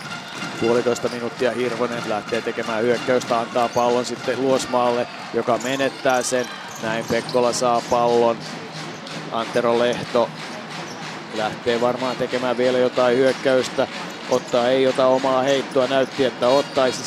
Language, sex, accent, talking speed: Finnish, male, native, 115 wpm